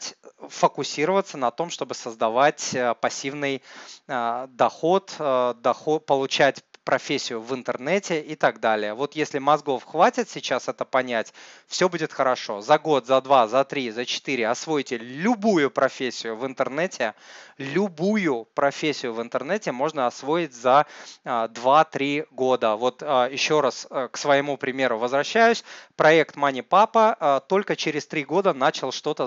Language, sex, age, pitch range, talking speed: Russian, male, 20-39, 125-175 Hz, 130 wpm